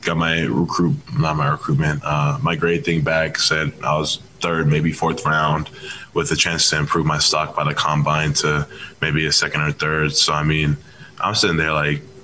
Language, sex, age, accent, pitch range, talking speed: English, male, 20-39, American, 80-95 Hz, 200 wpm